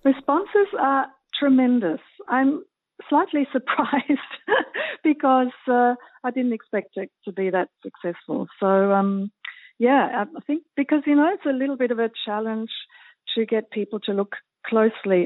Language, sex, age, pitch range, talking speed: Dutch, female, 50-69, 180-235 Hz, 145 wpm